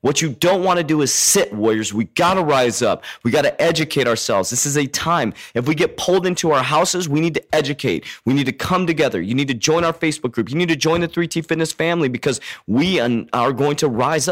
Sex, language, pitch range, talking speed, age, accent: male, English, 140-190 Hz, 250 wpm, 30-49, American